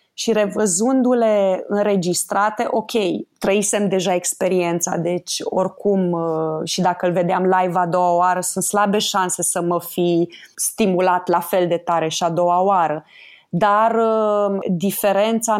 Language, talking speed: Romanian, 130 wpm